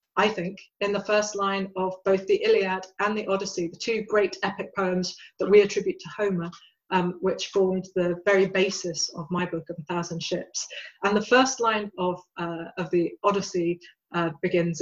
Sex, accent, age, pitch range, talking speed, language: female, British, 30-49, 175-205 Hz, 190 wpm, English